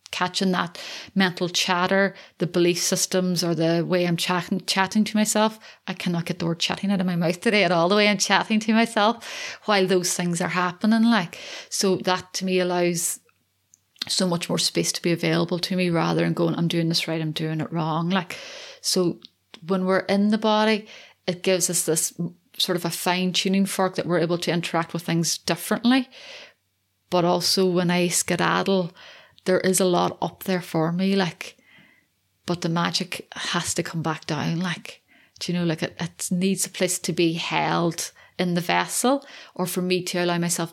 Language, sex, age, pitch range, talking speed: English, female, 30-49, 170-195 Hz, 195 wpm